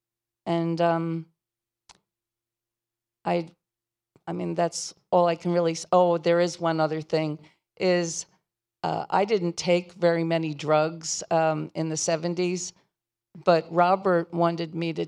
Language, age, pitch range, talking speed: French, 50-69, 160-180 Hz, 135 wpm